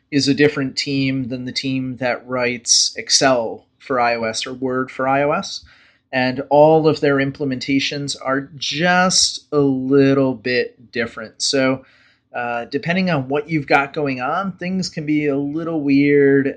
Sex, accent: male, American